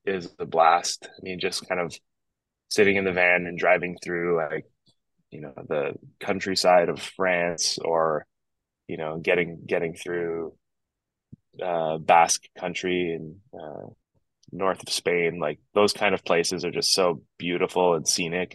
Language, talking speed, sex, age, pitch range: English, 150 wpm, male, 20-39, 85-95 Hz